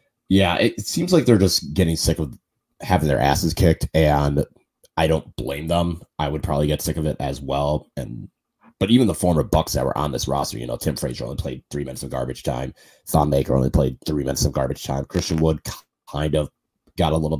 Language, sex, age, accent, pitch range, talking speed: English, male, 30-49, American, 75-90 Hz, 225 wpm